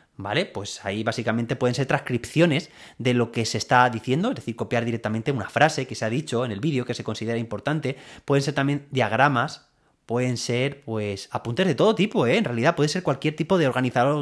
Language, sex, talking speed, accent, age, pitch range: Spanish, male, 210 wpm, Spanish, 20-39, 120-165 Hz